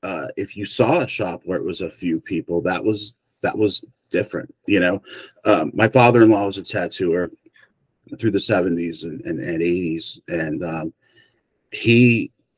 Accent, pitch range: American, 90-120 Hz